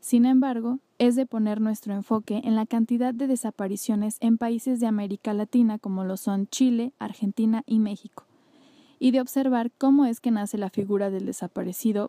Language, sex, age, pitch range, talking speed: Spanish, female, 20-39, 210-255 Hz, 175 wpm